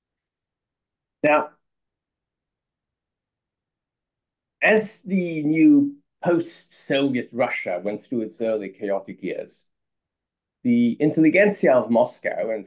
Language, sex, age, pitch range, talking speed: English, male, 50-69, 100-150 Hz, 80 wpm